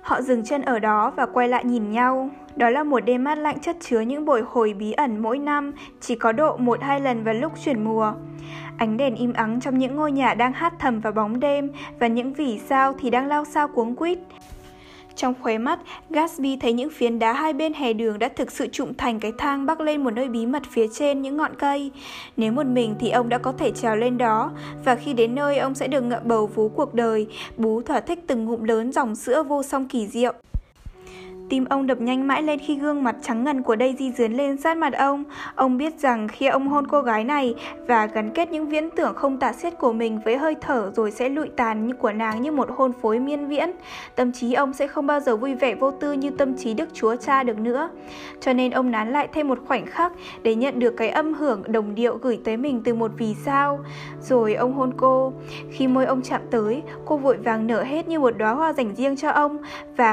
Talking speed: 240 wpm